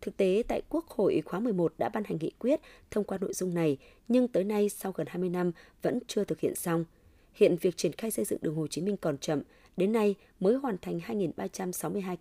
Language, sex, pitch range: Vietnamese, female, 165-210 Hz